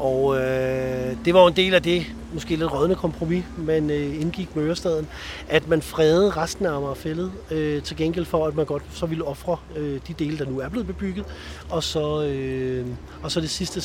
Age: 40-59